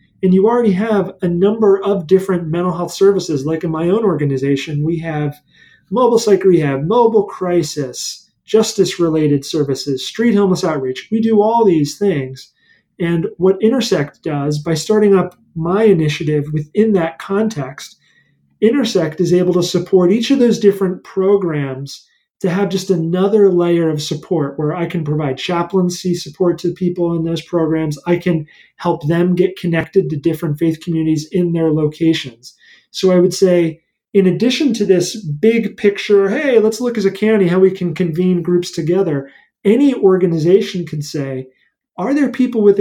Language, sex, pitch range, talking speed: English, male, 160-200 Hz, 165 wpm